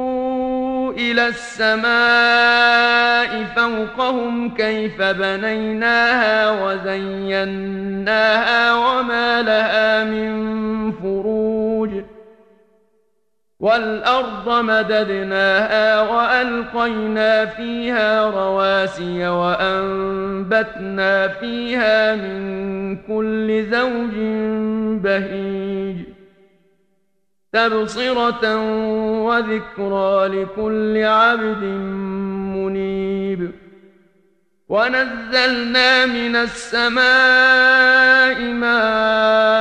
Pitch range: 195-235 Hz